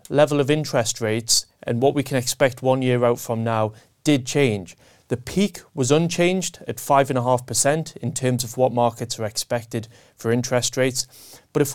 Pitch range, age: 110-135 Hz, 30-49